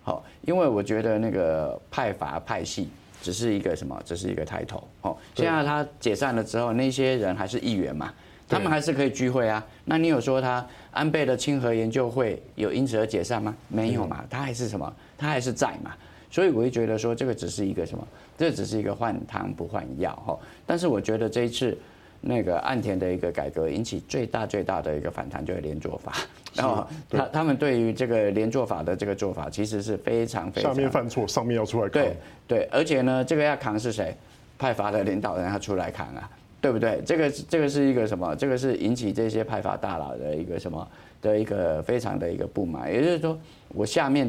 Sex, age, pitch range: male, 30-49, 105-135 Hz